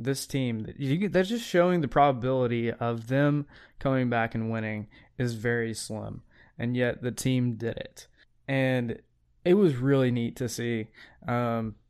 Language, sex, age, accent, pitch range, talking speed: English, male, 20-39, American, 115-130 Hz, 150 wpm